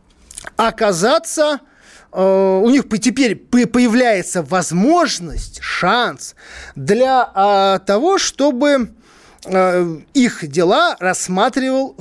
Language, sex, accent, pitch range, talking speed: Russian, male, native, 180-250 Hz, 75 wpm